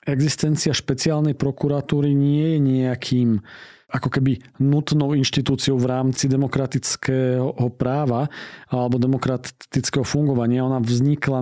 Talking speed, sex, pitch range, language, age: 100 wpm, male, 125-145 Hz, Slovak, 40-59